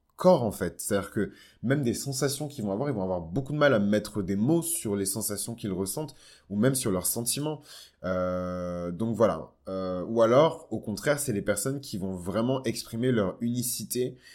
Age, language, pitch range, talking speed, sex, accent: 20-39, French, 95-120 Hz, 200 wpm, male, French